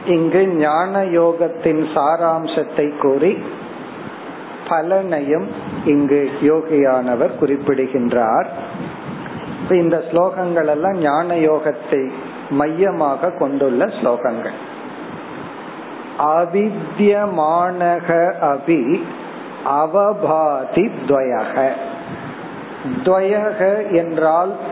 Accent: native